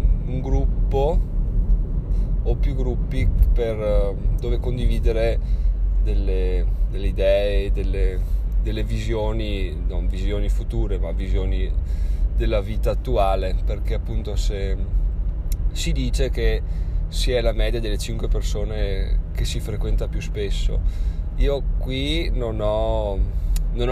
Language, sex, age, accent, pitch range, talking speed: Italian, male, 20-39, native, 85-115 Hz, 110 wpm